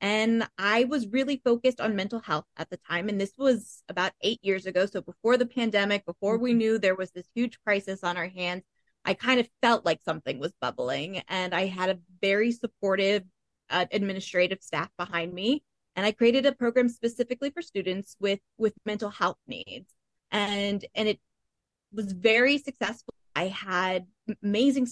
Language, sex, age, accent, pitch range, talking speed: English, female, 20-39, American, 180-230 Hz, 180 wpm